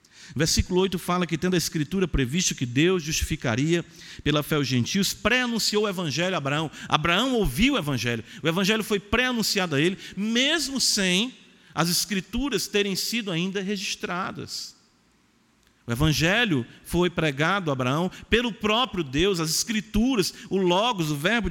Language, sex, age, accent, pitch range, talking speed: Portuguese, male, 50-69, Brazilian, 140-190 Hz, 150 wpm